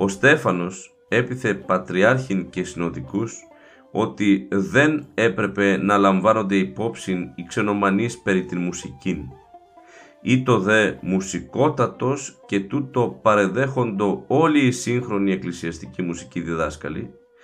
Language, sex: Greek, male